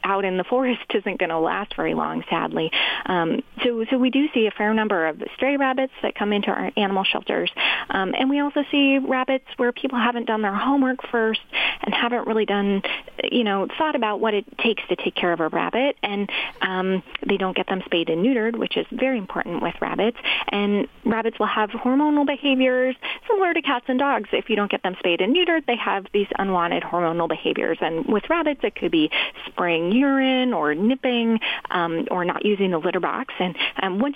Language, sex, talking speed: English, female, 210 wpm